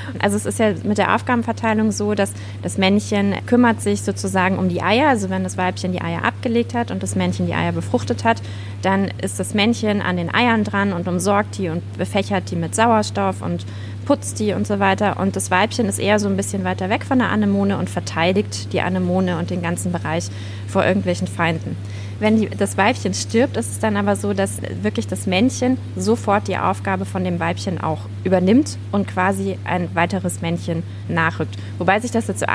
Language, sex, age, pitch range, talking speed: German, female, 20-39, 95-105 Hz, 205 wpm